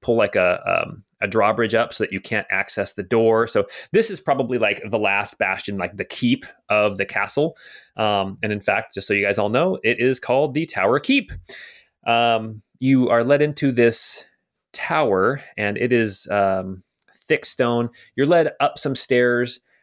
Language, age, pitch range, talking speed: English, 30-49, 100-120 Hz, 190 wpm